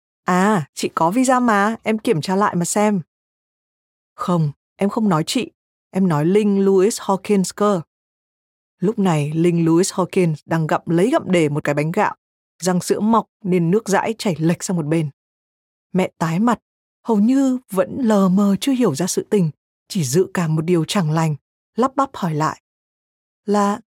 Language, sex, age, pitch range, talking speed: Vietnamese, female, 20-39, 170-220 Hz, 180 wpm